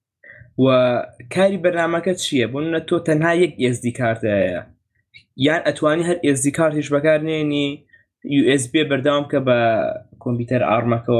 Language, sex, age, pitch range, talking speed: Arabic, male, 20-39, 120-145 Hz, 65 wpm